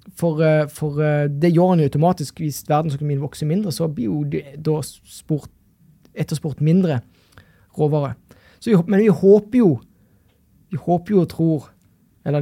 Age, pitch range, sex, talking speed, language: 20-39, 145-175 Hz, male, 125 wpm, English